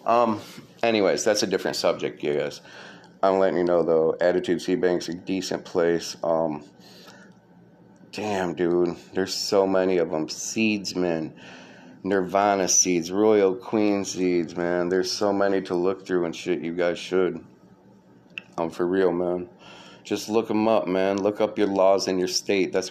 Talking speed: 165 wpm